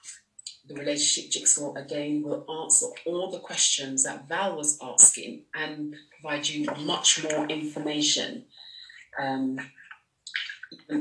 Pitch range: 140-170 Hz